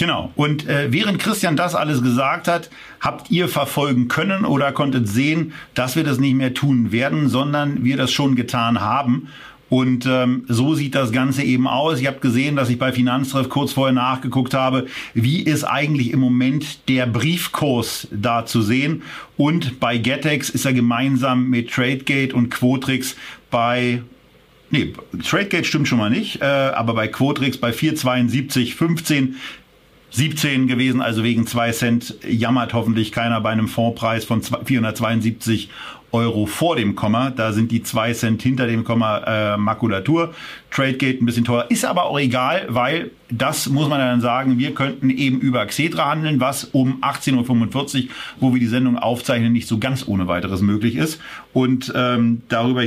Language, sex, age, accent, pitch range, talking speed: German, male, 50-69, German, 120-140 Hz, 170 wpm